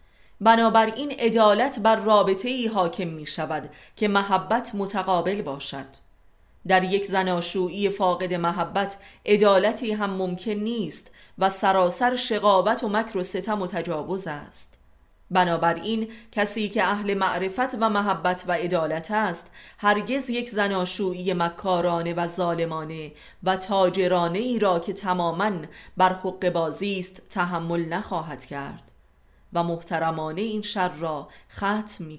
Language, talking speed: Persian, 125 wpm